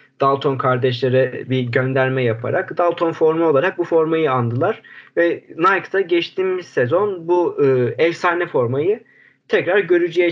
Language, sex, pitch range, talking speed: Turkish, male, 130-180 Hz, 115 wpm